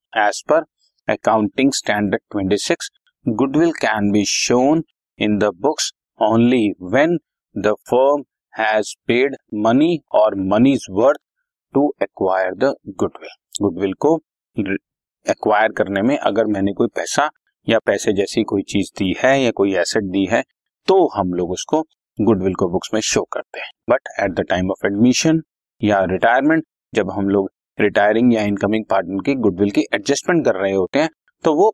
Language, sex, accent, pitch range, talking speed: Hindi, male, native, 100-135 Hz, 160 wpm